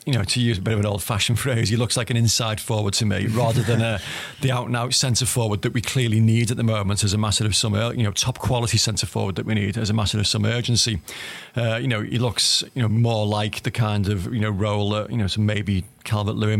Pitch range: 105-120 Hz